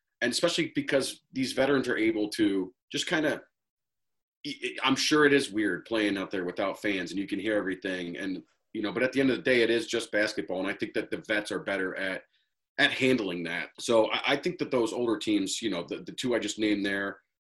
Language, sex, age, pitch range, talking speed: English, male, 30-49, 105-135 Hz, 235 wpm